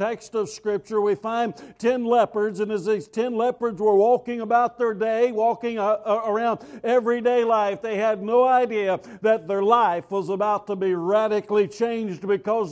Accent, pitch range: American, 195-225 Hz